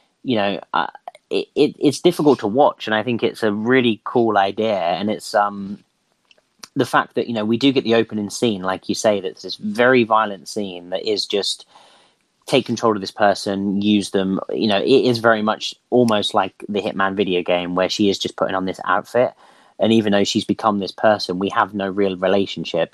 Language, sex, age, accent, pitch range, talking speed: English, male, 30-49, British, 95-120 Hz, 210 wpm